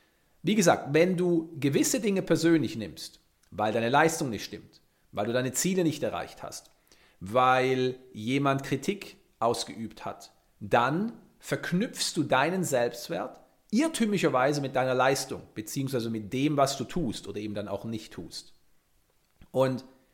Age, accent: 40-59, German